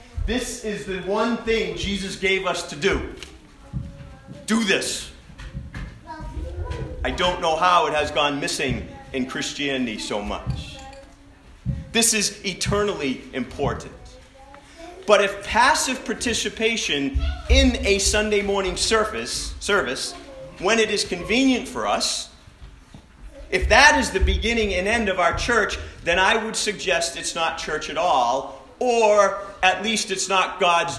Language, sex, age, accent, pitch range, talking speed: English, male, 40-59, American, 170-225 Hz, 135 wpm